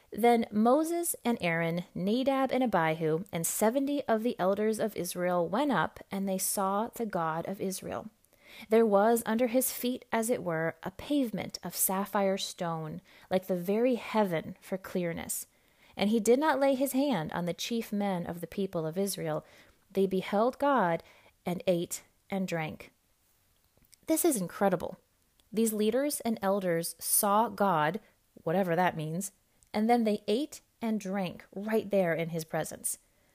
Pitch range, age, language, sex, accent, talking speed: 180-245 Hz, 30-49, English, female, American, 160 wpm